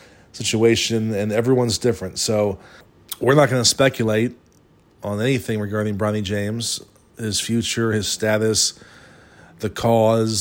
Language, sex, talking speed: English, male, 120 wpm